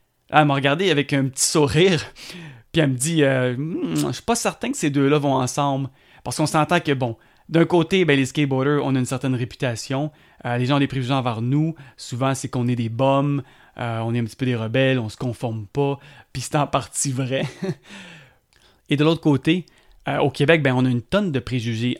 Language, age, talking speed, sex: French, 30-49, 225 wpm, male